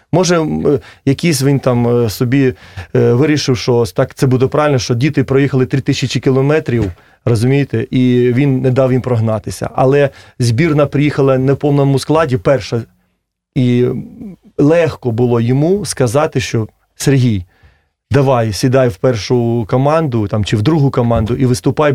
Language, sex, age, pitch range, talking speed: Russian, male, 30-49, 120-150 Hz, 135 wpm